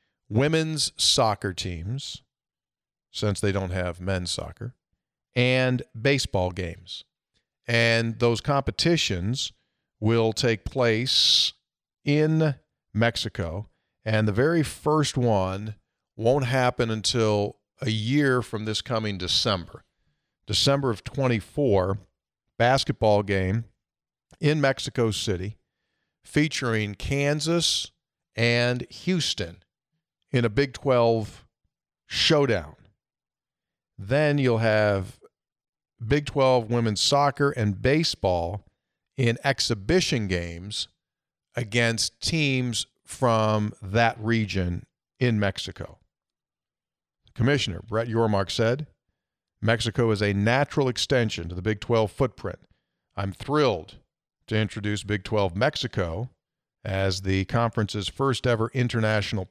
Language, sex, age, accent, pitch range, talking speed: English, male, 50-69, American, 100-130 Hz, 100 wpm